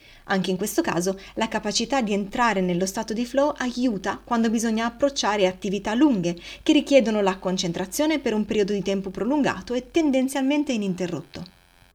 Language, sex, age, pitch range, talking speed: Italian, female, 30-49, 185-260 Hz, 155 wpm